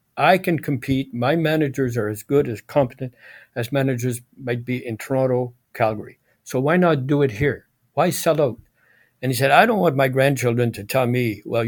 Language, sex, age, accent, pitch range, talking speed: English, male, 60-79, American, 120-145 Hz, 195 wpm